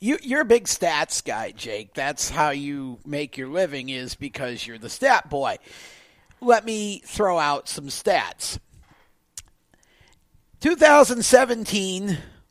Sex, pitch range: male, 190-290 Hz